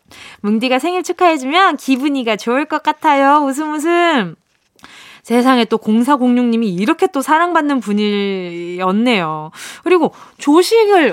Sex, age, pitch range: female, 20-39, 230-355 Hz